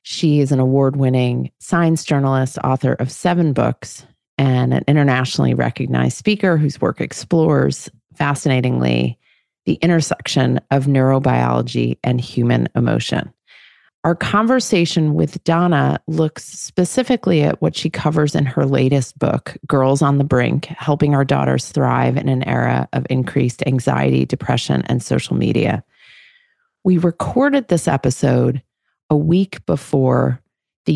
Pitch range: 125-165 Hz